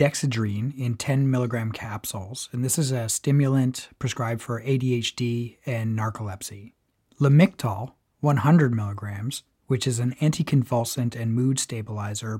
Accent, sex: American, male